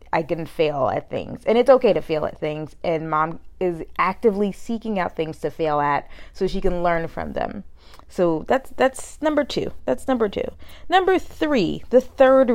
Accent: American